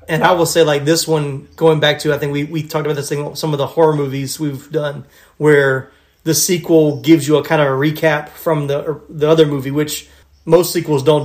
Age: 30-49